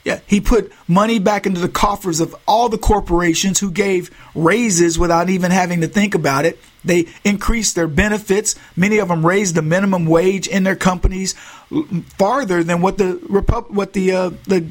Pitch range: 160-215 Hz